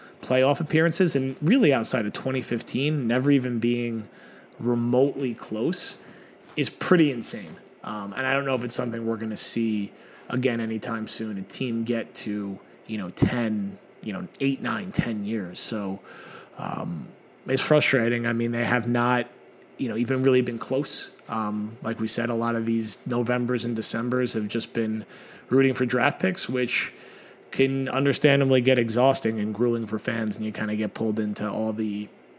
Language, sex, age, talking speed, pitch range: English, male, 30-49, 175 wpm, 110-130 Hz